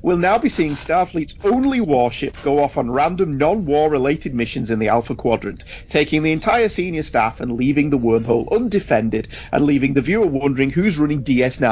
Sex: male